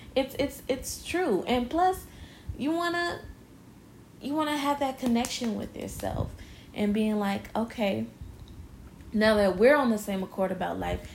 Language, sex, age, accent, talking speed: English, female, 20-39, American, 160 wpm